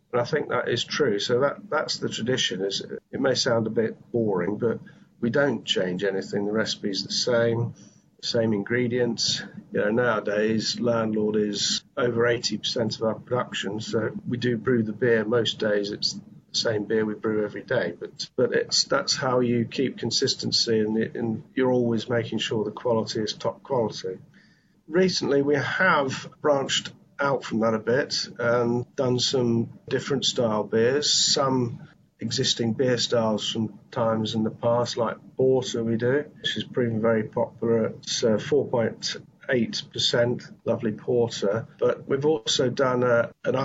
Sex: male